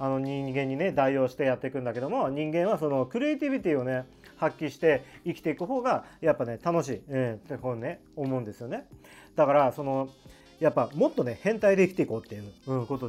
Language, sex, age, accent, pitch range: Japanese, male, 40-59, native, 125-165 Hz